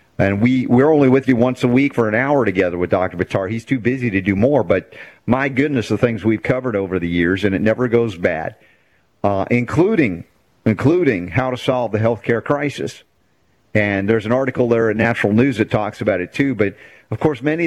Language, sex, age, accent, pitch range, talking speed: English, male, 50-69, American, 110-140 Hz, 215 wpm